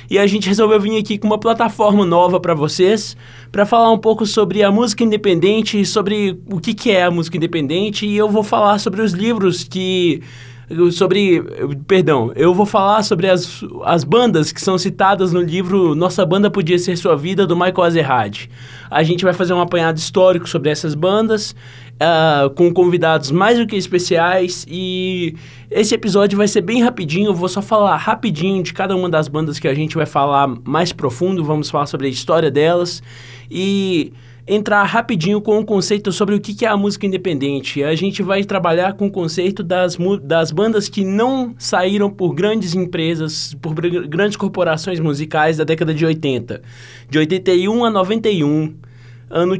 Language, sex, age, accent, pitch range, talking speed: Portuguese, male, 20-39, Brazilian, 155-200 Hz, 180 wpm